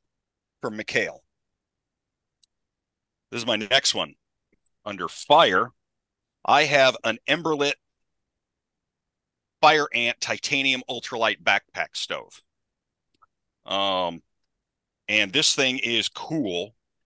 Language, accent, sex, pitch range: English, American, male, 95-120 Hz